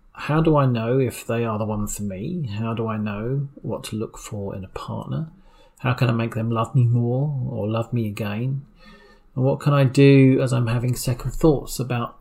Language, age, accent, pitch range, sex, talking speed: English, 40-59, British, 110-135 Hz, male, 220 wpm